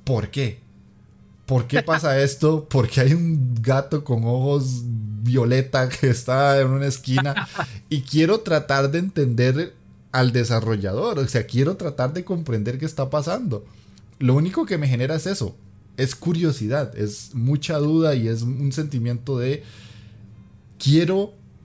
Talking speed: 145 wpm